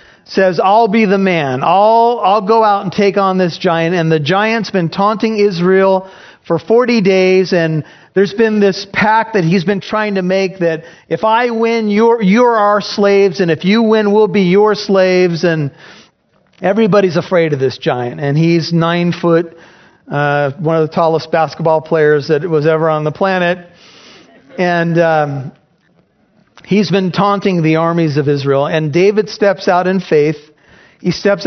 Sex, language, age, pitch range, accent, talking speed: male, English, 40-59, 160-200 Hz, American, 170 wpm